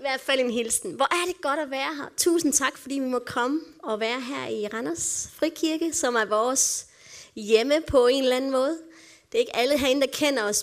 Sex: female